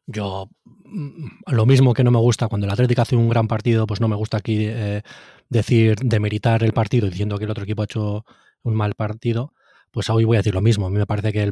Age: 20-39